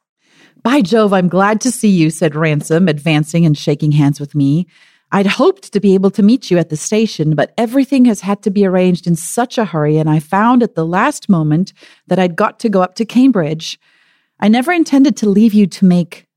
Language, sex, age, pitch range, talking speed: English, female, 40-59, 165-230 Hz, 220 wpm